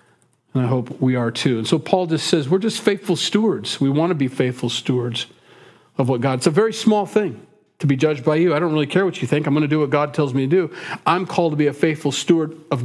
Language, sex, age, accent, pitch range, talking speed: English, male, 40-59, American, 130-170 Hz, 275 wpm